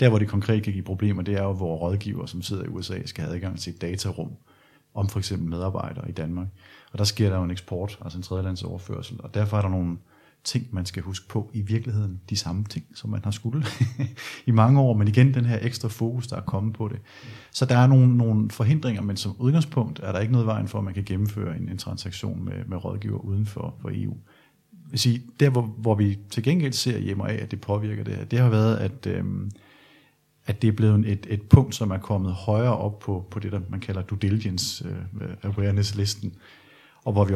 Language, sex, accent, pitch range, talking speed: Danish, male, native, 100-120 Hz, 225 wpm